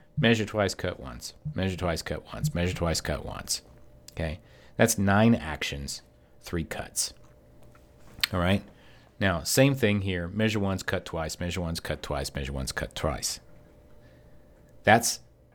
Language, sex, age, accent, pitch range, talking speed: English, male, 50-69, American, 80-120 Hz, 145 wpm